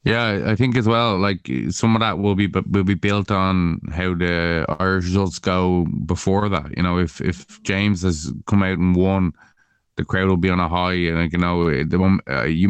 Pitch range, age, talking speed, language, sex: 85-95 Hz, 20-39, 220 wpm, English, male